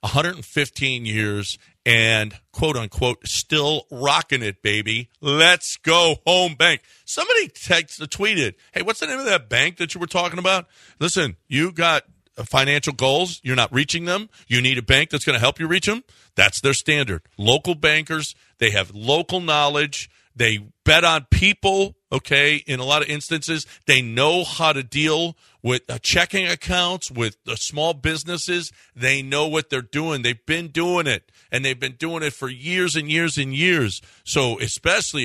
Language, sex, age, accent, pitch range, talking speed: English, male, 50-69, American, 125-165 Hz, 170 wpm